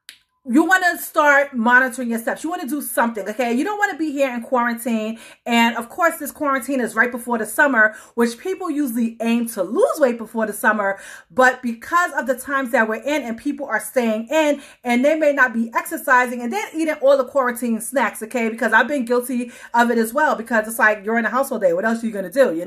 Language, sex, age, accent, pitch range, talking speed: English, female, 30-49, American, 225-275 Hz, 245 wpm